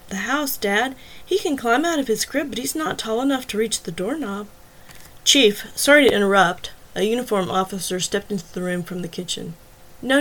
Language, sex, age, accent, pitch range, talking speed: English, female, 30-49, American, 180-225 Hz, 200 wpm